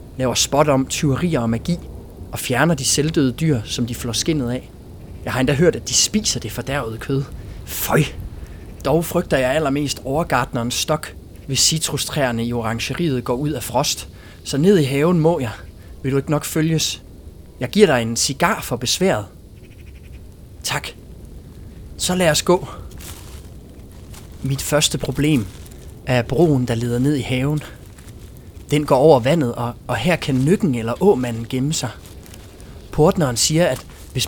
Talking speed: 155 wpm